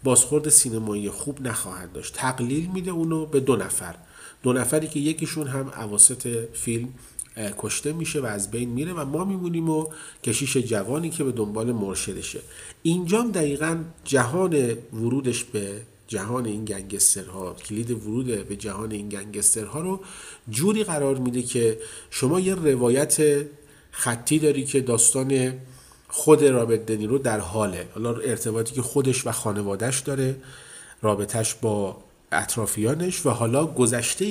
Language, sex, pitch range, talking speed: Persian, male, 110-145 Hz, 135 wpm